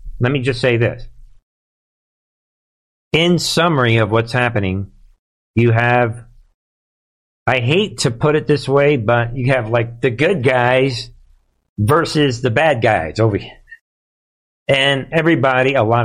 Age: 50-69